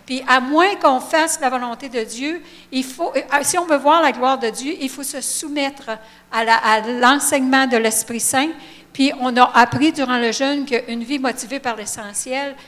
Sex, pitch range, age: female, 235-285 Hz, 60-79